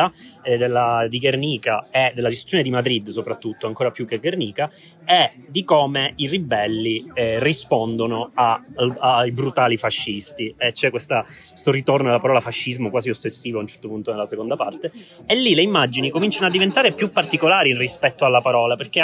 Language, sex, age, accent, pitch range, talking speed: Italian, male, 30-49, native, 120-165 Hz, 170 wpm